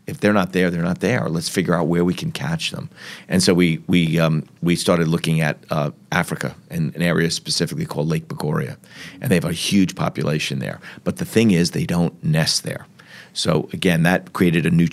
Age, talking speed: 40-59, 215 wpm